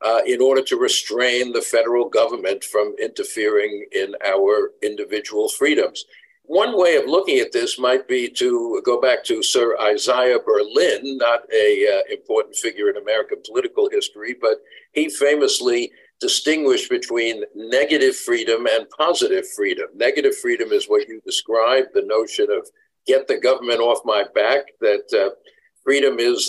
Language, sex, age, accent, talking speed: English, male, 50-69, American, 150 wpm